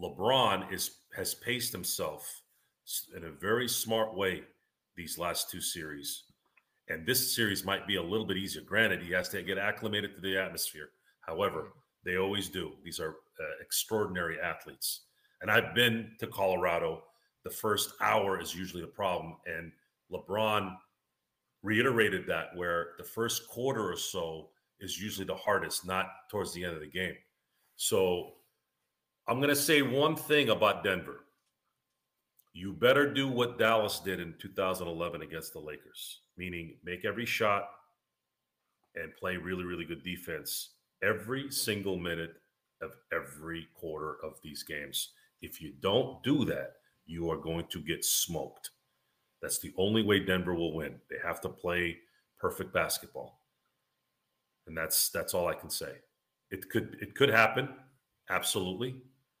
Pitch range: 85-120 Hz